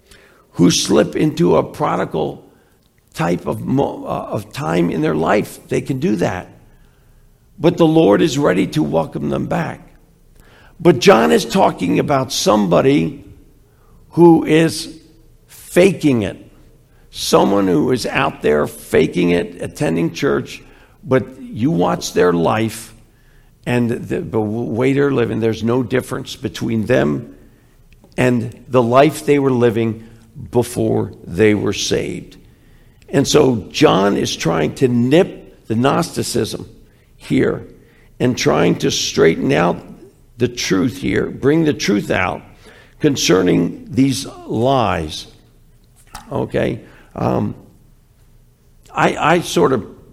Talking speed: 120 wpm